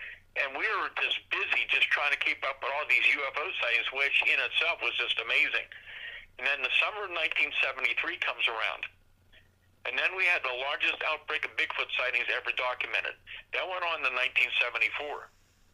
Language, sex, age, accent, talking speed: English, male, 50-69, American, 175 wpm